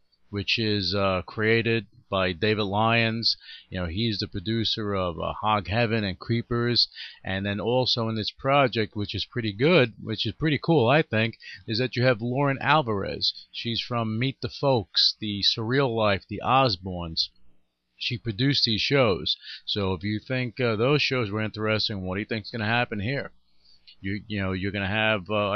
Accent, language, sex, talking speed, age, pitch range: American, English, male, 185 wpm, 40-59, 95-120 Hz